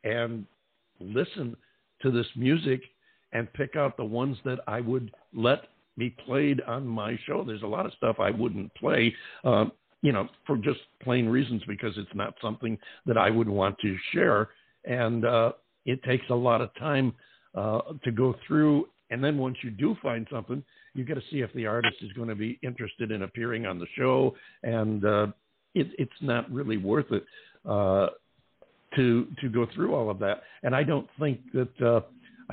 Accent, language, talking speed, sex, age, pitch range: American, English, 185 wpm, male, 60-79, 105-130 Hz